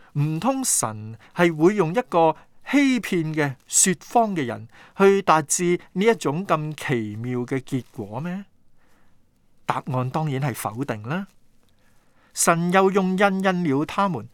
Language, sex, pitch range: Chinese, male, 125-175 Hz